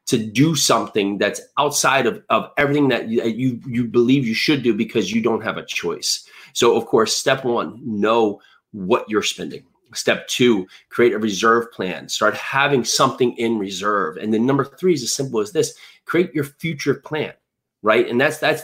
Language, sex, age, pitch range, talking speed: English, male, 30-49, 115-145 Hz, 185 wpm